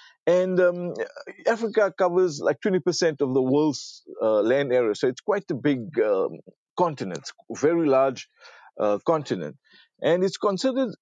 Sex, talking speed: male, 140 wpm